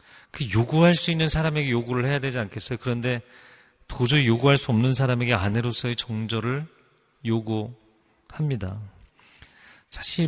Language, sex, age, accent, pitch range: Korean, male, 40-59, native, 110-150 Hz